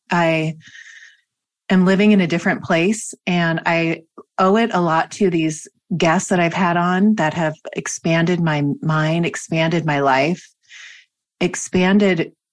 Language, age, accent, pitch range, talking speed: English, 30-49, American, 160-185 Hz, 140 wpm